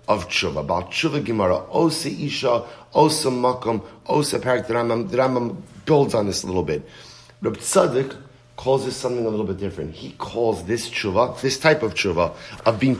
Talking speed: 170 wpm